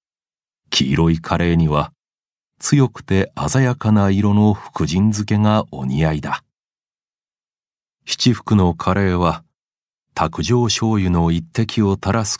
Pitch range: 80-110 Hz